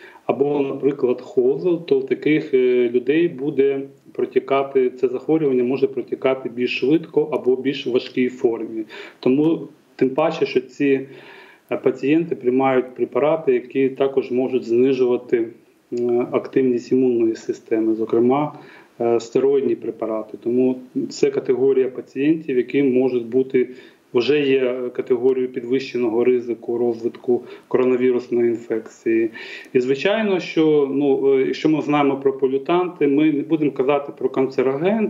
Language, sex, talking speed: Ukrainian, male, 115 wpm